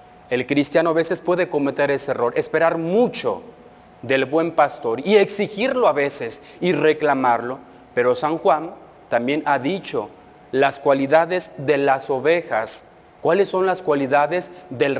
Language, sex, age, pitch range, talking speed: Spanish, male, 40-59, 135-170 Hz, 140 wpm